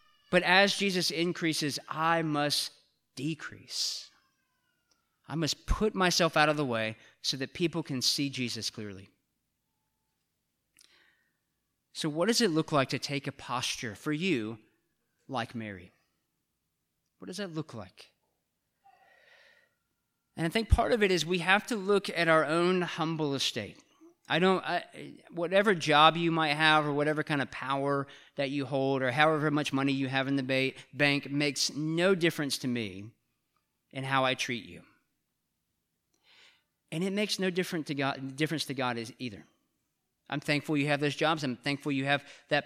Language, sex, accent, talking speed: English, male, American, 155 wpm